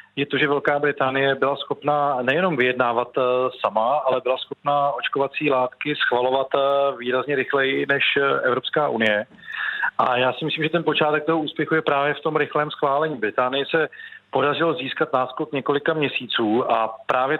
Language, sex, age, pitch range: Czech, male, 40-59, 125-145 Hz